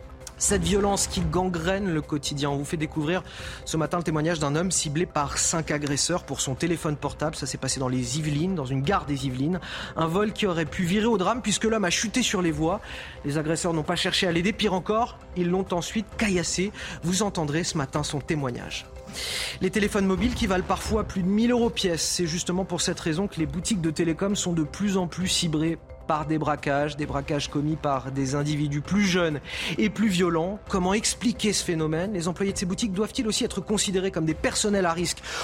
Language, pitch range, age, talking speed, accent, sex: French, 150-190 Hz, 30-49, 215 wpm, French, male